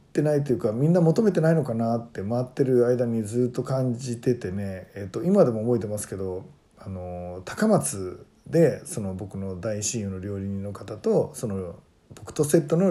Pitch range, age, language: 110-150 Hz, 40-59, Japanese